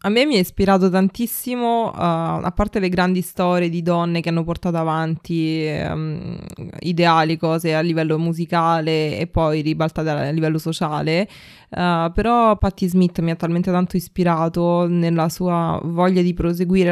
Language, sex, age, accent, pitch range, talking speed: Italian, female, 20-39, native, 165-185 Hz, 150 wpm